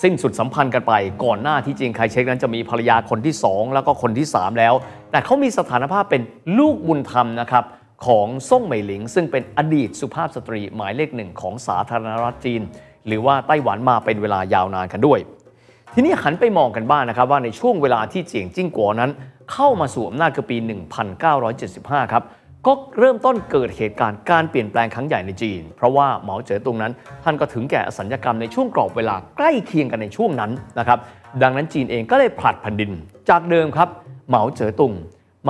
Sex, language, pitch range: male, Thai, 115-160 Hz